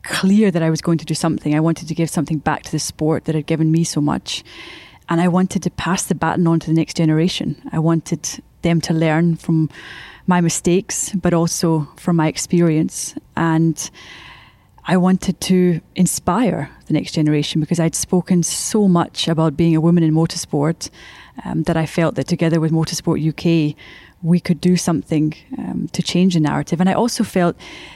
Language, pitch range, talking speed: English, 155-175 Hz, 190 wpm